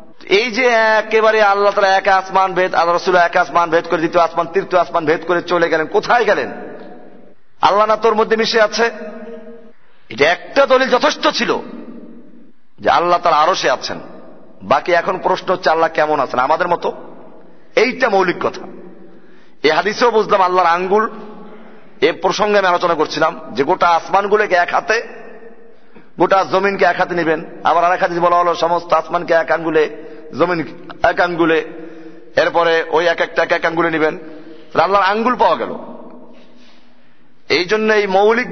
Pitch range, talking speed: 170-220 Hz, 125 wpm